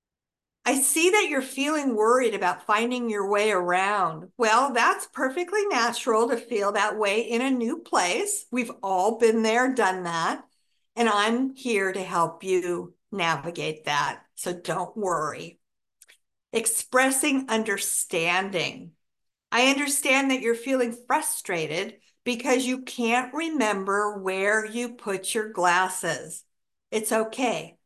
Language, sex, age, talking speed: English, female, 50-69, 125 wpm